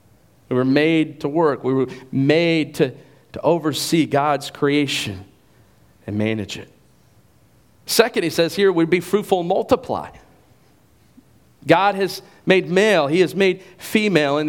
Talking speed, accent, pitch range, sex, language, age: 140 wpm, American, 145-185 Hz, male, English, 40-59